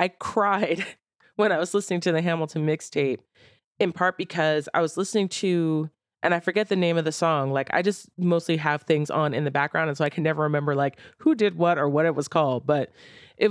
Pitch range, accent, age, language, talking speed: 150-175 Hz, American, 30-49, English, 230 wpm